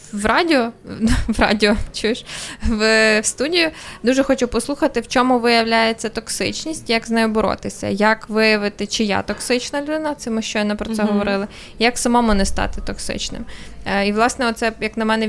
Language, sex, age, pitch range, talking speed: Ukrainian, female, 20-39, 215-255 Hz, 155 wpm